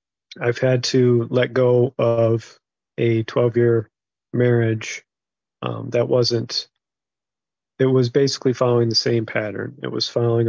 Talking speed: 125 wpm